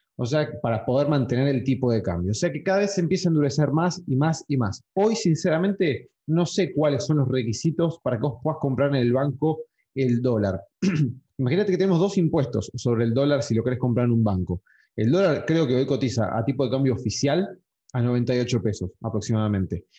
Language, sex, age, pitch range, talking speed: Spanish, male, 20-39, 120-160 Hz, 215 wpm